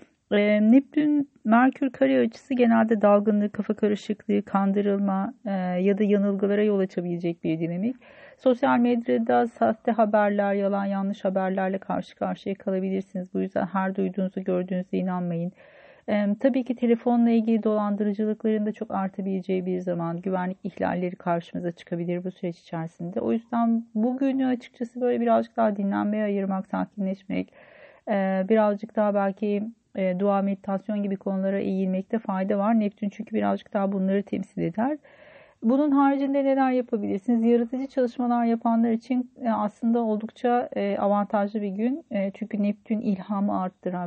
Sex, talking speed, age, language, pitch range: female, 125 wpm, 40-59, Turkish, 190-230 Hz